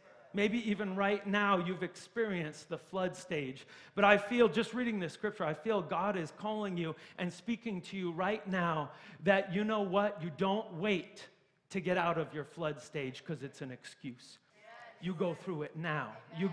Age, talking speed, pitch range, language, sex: 40-59, 190 wpm, 170-225 Hz, English, male